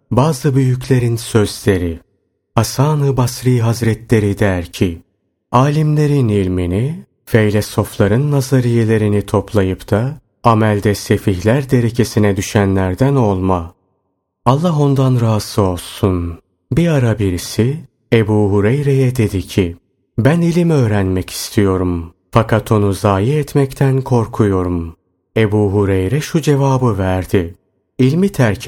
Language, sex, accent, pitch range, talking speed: Turkish, male, native, 100-130 Hz, 95 wpm